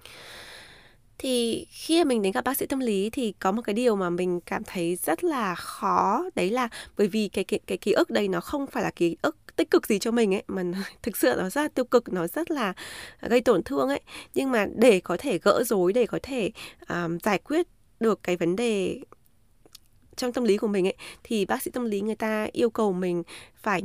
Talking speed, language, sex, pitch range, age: 230 wpm, Vietnamese, female, 175-235 Hz, 20-39